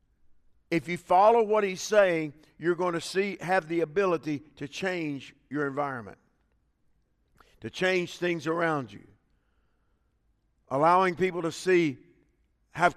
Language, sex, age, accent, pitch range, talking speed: English, male, 50-69, American, 150-190 Hz, 125 wpm